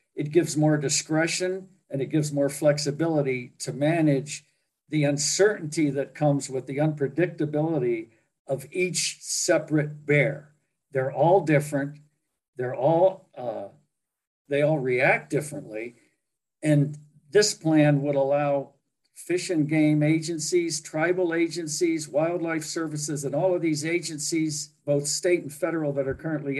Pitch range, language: 140-165 Hz, English